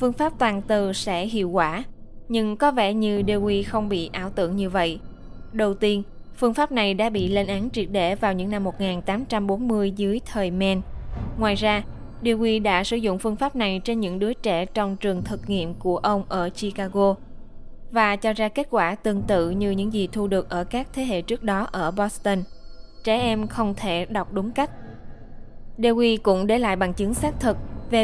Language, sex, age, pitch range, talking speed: Vietnamese, female, 20-39, 195-225 Hz, 200 wpm